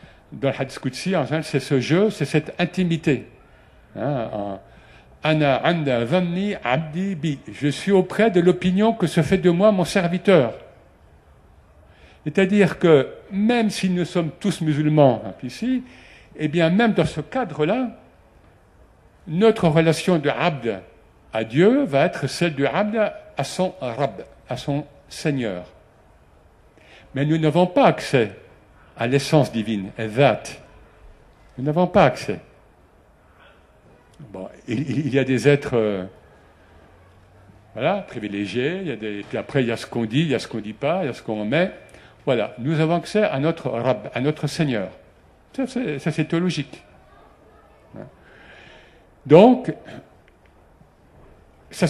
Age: 60-79